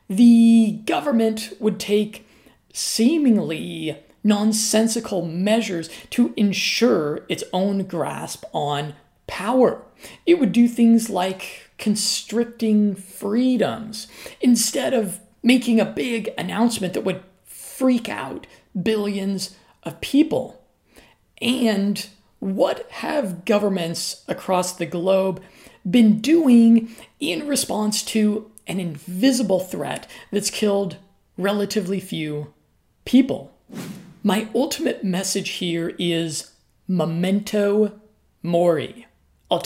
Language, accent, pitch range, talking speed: English, American, 185-225 Hz, 95 wpm